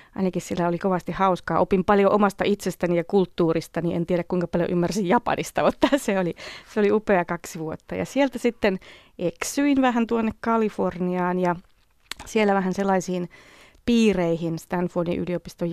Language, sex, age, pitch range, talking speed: Finnish, female, 30-49, 170-205 Hz, 150 wpm